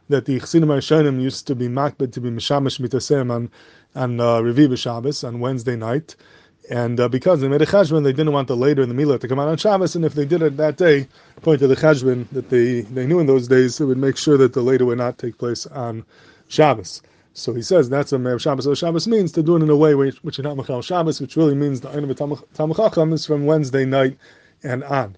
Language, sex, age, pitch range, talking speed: English, male, 20-39, 125-150 Hz, 245 wpm